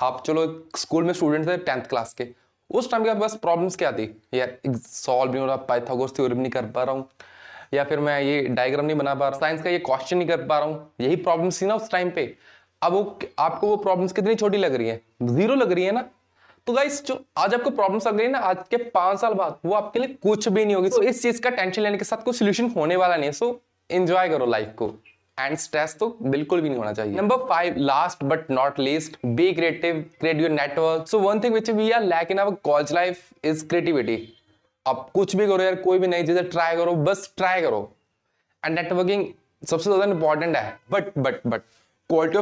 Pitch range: 140-200 Hz